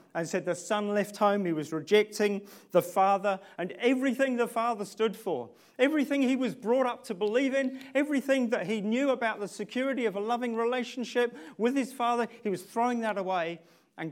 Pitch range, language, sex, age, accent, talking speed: 135-215 Hz, English, male, 40-59, British, 190 wpm